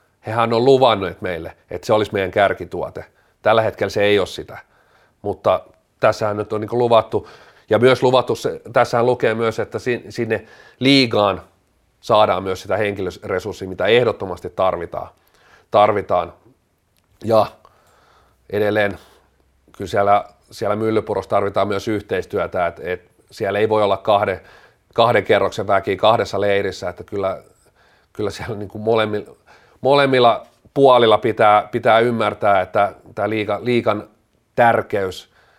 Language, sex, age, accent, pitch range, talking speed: Finnish, male, 40-59, native, 100-115 Hz, 125 wpm